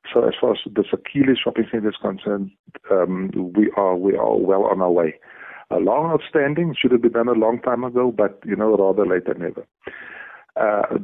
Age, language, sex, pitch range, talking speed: 50-69, English, male, 100-115 Hz, 205 wpm